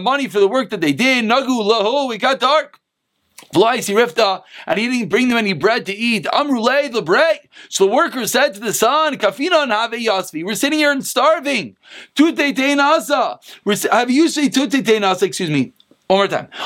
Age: 40-59